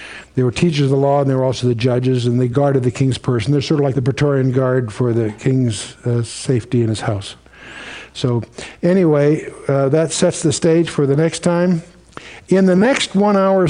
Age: 60-79